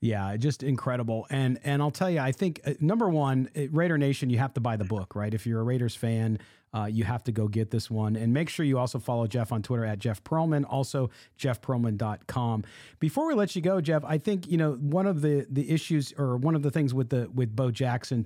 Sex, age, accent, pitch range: male, 40-59, American, 120-155 Hz